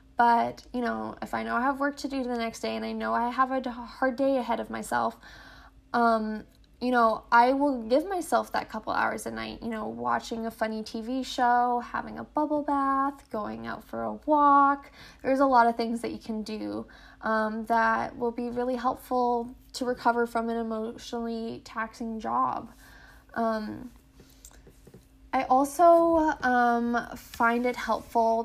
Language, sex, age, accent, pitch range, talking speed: English, female, 10-29, American, 220-255 Hz, 175 wpm